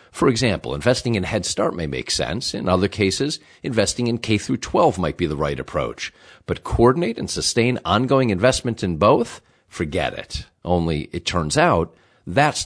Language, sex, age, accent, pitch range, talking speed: English, male, 50-69, American, 90-125 Hz, 170 wpm